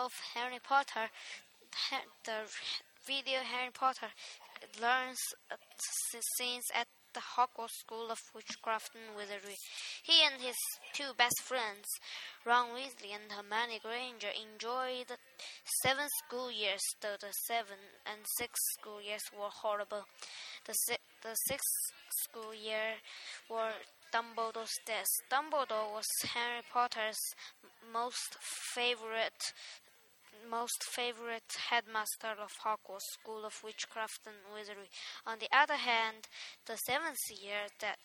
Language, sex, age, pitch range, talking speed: English, female, 10-29, 220-245 Hz, 120 wpm